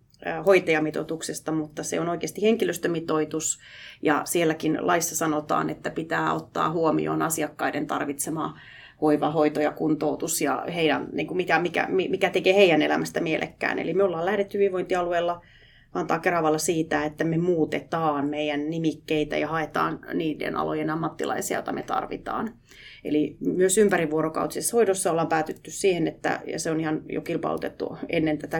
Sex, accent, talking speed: female, native, 140 wpm